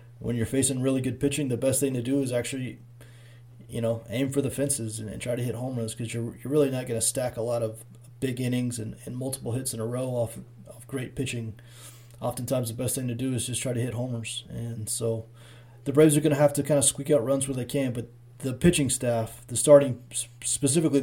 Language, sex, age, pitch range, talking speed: English, male, 30-49, 115-135 Hz, 245 wpm